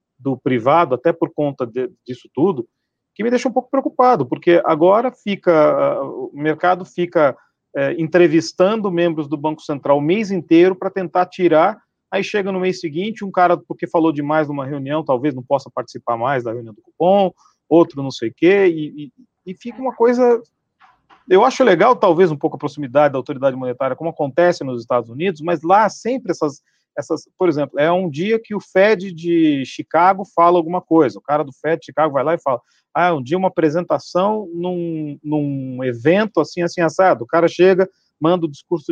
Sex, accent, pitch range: male, Brazilian, 145-185 Hz